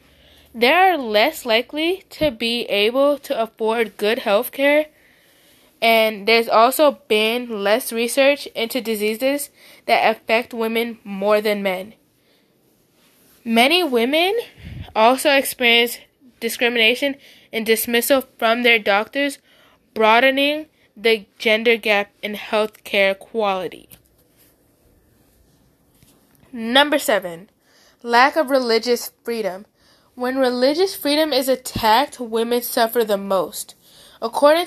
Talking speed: 105 wpm